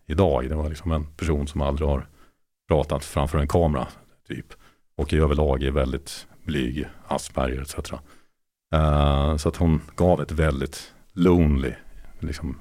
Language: Swedish